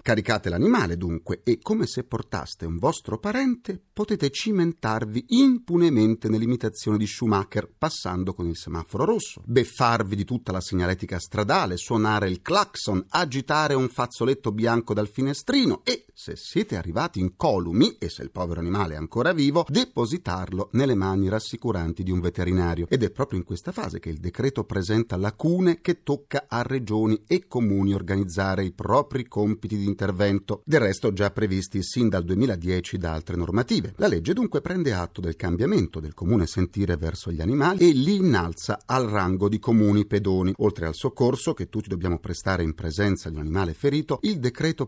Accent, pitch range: native, 90-135 Hz